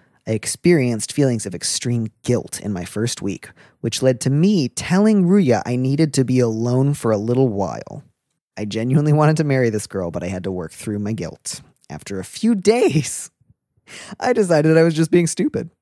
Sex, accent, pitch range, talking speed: male, American, 110-160 Hz, 195 wpm